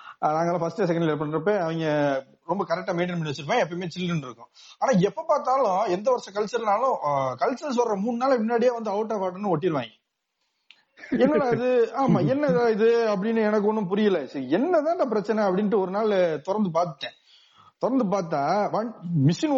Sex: male